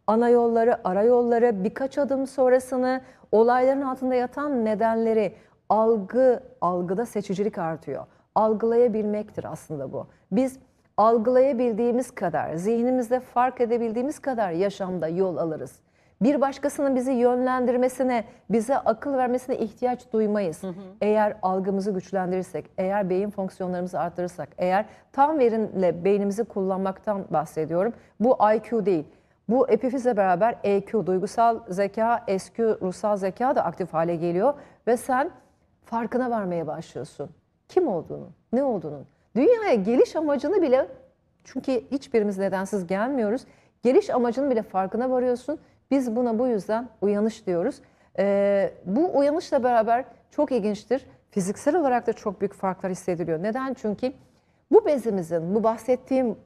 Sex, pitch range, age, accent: female, 195-255 Hz, 40-59, native